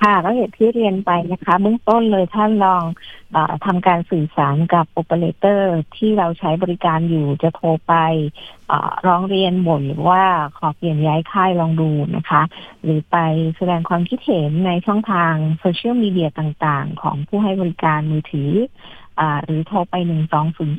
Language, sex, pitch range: Thai, female, 155-185 Hz